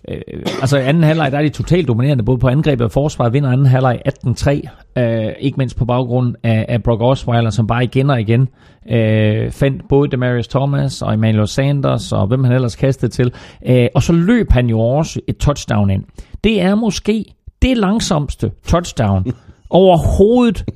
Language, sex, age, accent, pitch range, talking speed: Danish, male, 40-59, native, 120-170 Hz, 190 wpm